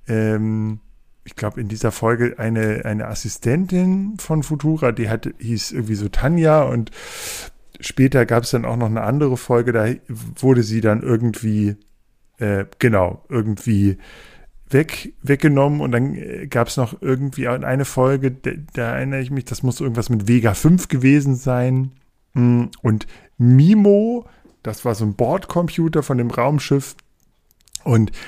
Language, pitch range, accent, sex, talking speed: German, 115-145 Hz, German, male, 140 wpm